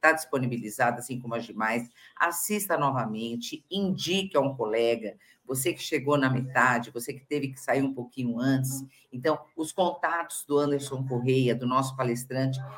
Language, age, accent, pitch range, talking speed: Portuguese, 50-69, Brazilian, 125-145 Hz, 160 wpm